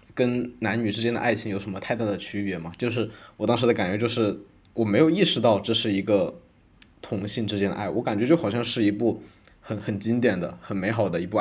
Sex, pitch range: male, 95-110 Hz